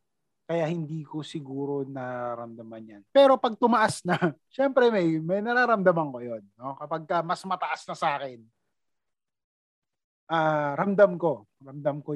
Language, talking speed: Filipino, 150 wpm